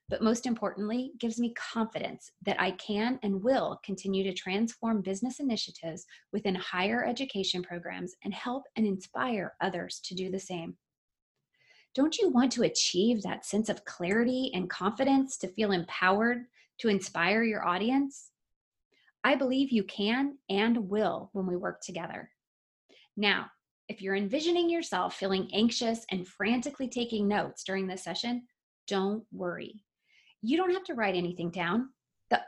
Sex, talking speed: female, 150 wpm